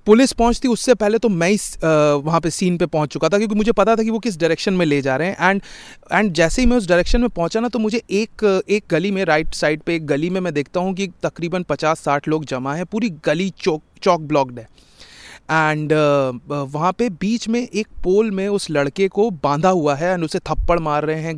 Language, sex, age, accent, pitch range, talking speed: English, male, 30-49, Indian, 155-205 Hz, 165 wpm